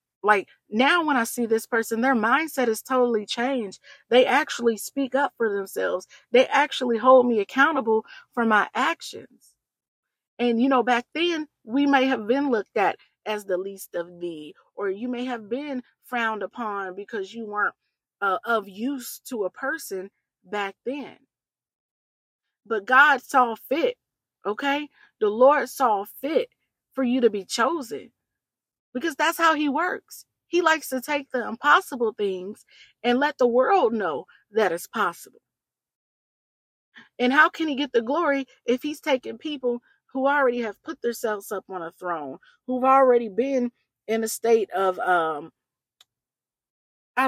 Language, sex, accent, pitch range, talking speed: English, female, American, 215-280 Hz, 155 wpm